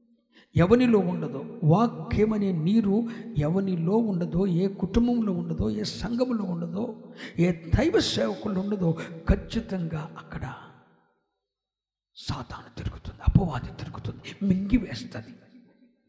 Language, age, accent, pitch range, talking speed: Telugu, 50-69, native, 150-245 Hz, 85 wpm